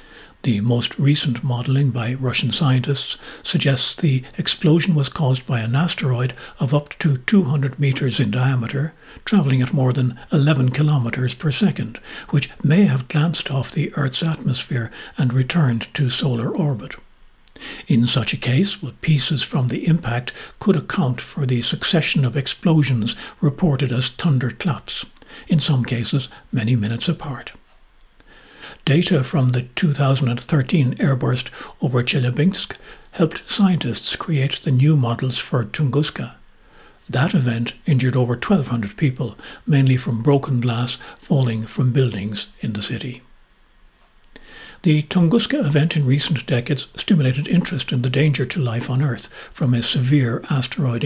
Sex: male